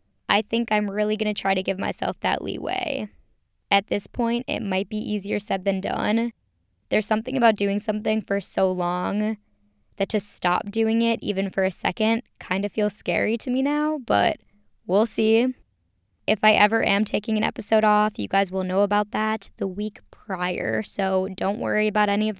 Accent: American